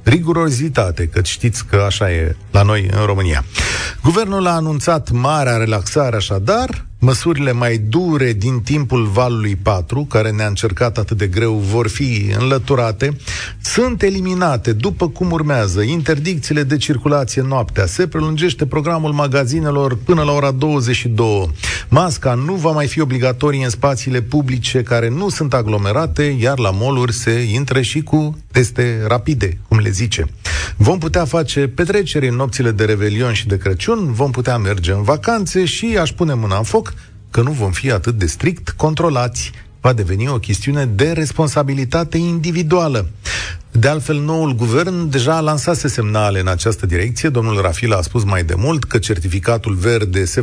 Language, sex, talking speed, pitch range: Romanian, male, 155 wpm, 105-150 Hz